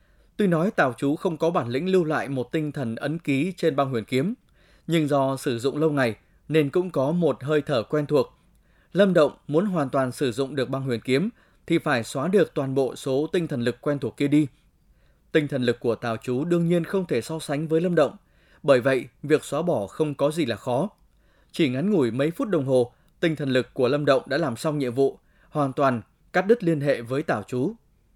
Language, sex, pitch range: Vietnamese, male, 135-165 Hz